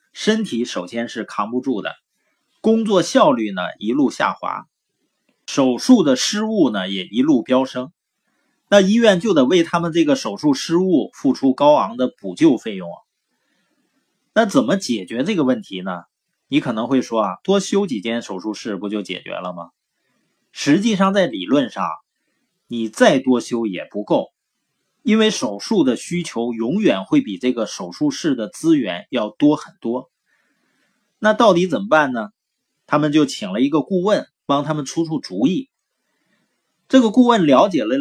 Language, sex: Chinese, male